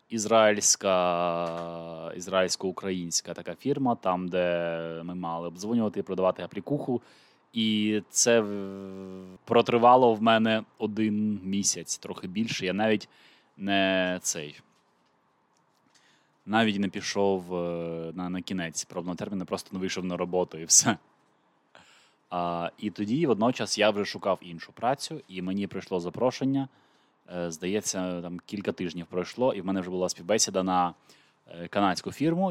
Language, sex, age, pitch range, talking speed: Ukrainian, male, 20-39, 90-110 Hz, 120 wpm